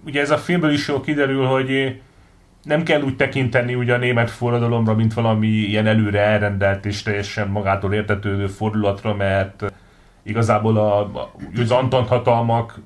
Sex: male